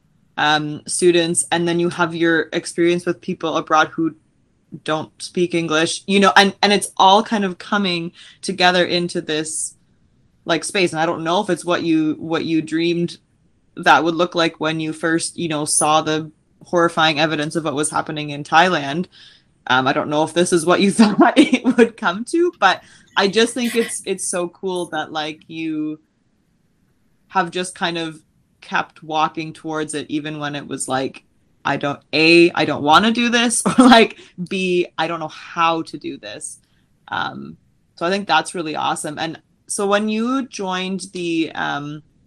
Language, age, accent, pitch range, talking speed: English, 20-39, American, 155-180 Hz, 185 wpm